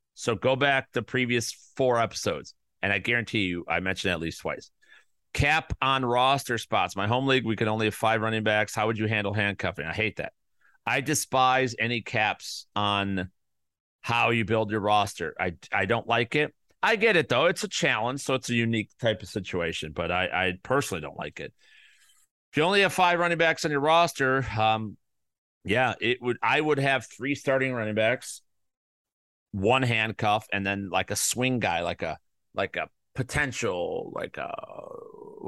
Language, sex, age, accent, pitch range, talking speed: English, male, 40-59, American, 100-130 Hz, 190 wpm